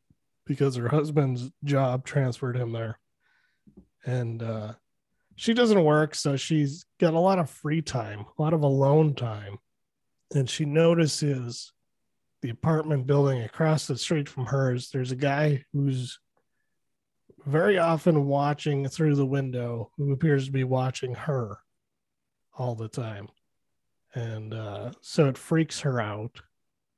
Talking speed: 140 wpm